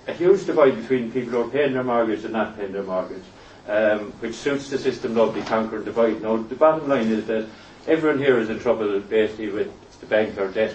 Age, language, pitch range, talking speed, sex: 40-59, English, 110-125 Hz, 225 wpm, male